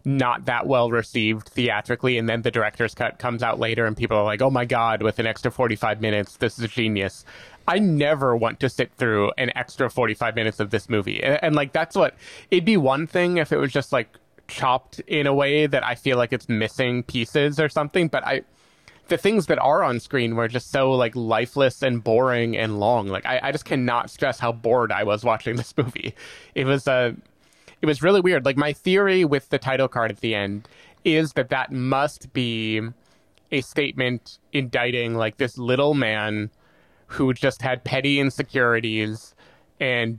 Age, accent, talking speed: 20-39, American, 200 wpm